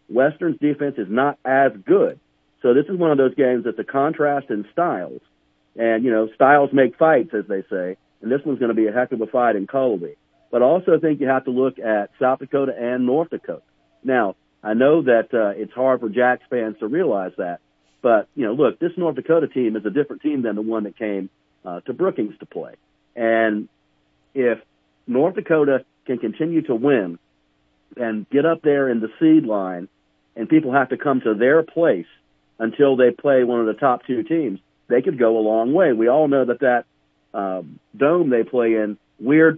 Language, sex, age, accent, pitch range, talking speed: English, male, 50-69, American, 105-140 Hz, 210 wpm